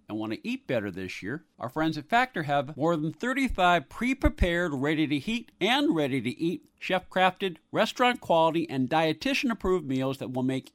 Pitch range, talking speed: 130-180 Hz, 190 wpm